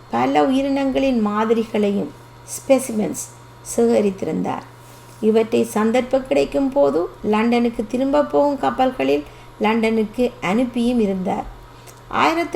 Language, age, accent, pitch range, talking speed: Tamil, 50-69, native, 205-285 Hz, 80 wpm